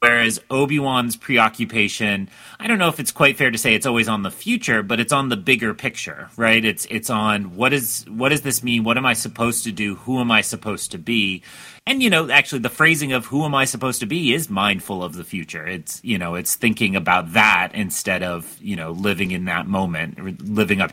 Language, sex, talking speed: English, male, 230 wpm